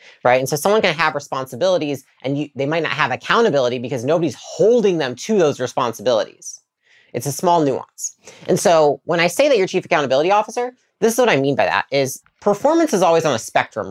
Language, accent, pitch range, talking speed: English, American, 135-195 Hz, 205 wpm